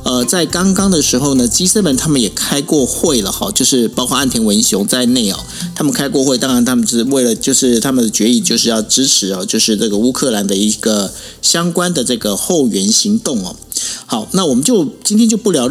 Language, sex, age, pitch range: Chinese, male, 50-69, 130-225 Hz